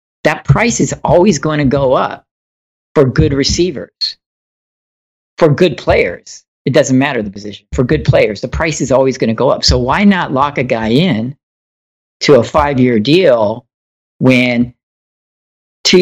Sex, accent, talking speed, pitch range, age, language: male, American, 165 wpm, 115-175 Hz, 50-69, English